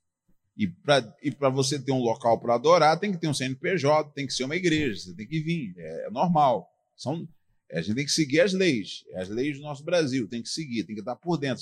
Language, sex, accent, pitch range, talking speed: Portuguese, male, Brazilian, 135-205 Hz, 240 wpm